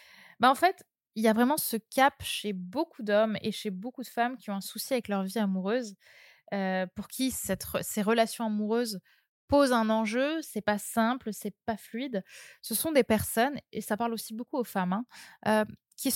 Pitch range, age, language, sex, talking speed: 195-245 Hz, 20-39, French, female, 215 wpm